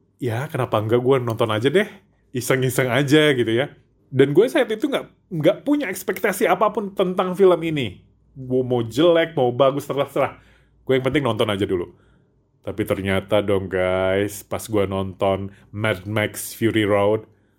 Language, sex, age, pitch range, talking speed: Indonesian, male, 30-49, 110-165 Hz, 155 wpm